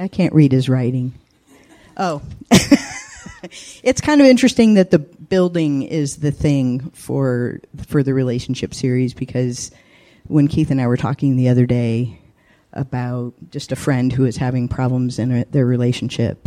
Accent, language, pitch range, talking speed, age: American, English, 125-150 Hz, 155 wpm, 40-59